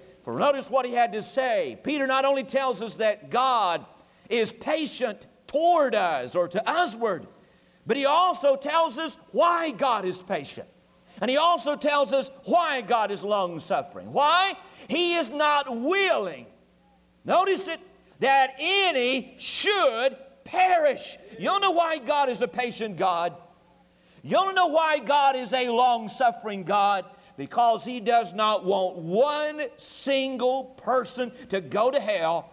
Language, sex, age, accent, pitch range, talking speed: English, male, 50-69, American, 220-295 Hz, 150 wpm